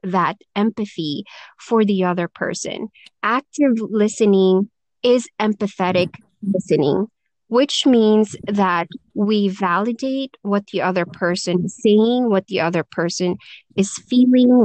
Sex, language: female, English